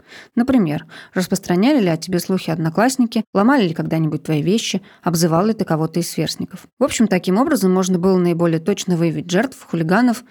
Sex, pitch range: female, 175-215 Hz